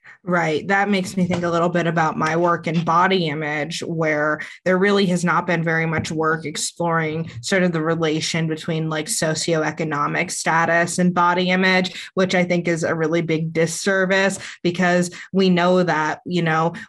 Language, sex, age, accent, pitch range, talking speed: English, female, 20-39, American, 160-190 Hz, 175 wpm